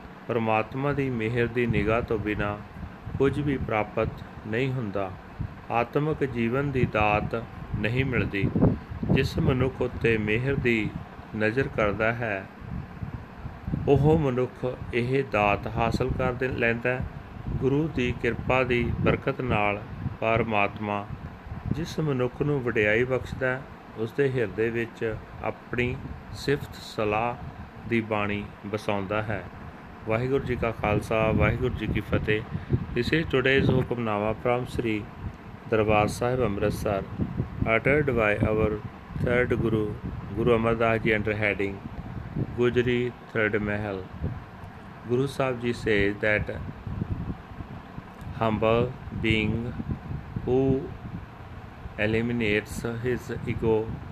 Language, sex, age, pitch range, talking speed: Punjabi, male, 40-59, 105-125 Hz, 110 wpm